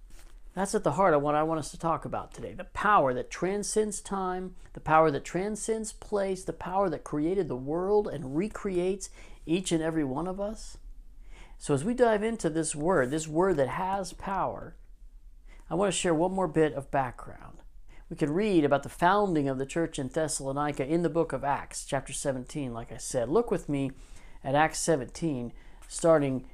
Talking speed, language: 195 wpm, English